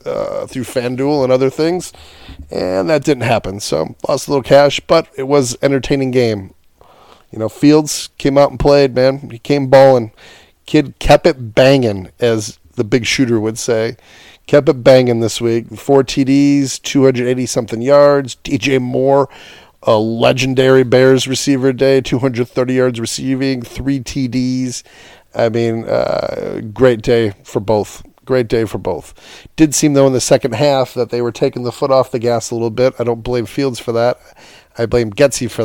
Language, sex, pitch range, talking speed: English, male, 115-140 Hz, 170 wpm